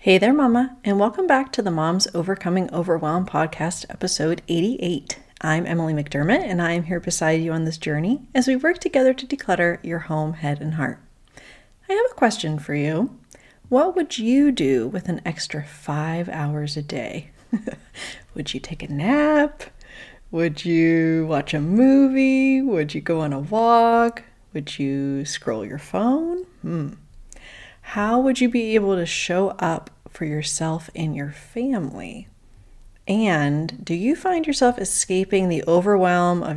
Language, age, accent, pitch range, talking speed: English, 40-59, American, 150-230 Hz, 160 wpm